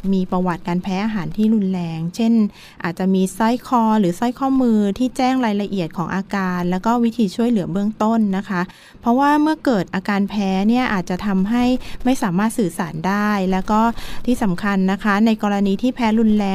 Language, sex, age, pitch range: Thai, female, 20-39, 185-225 Hz